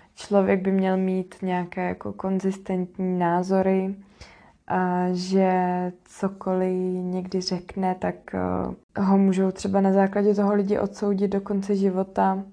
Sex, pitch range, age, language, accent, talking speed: female, 185-205 Hz, 20-39, Czech, native, 115 wpm